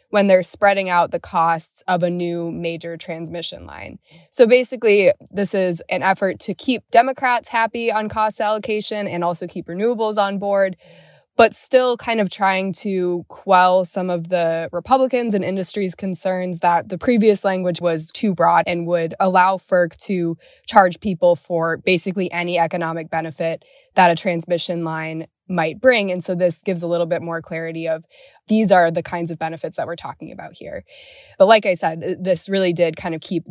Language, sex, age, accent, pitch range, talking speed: English, female, 20-39, American, 170-200 Hz, 180 wpm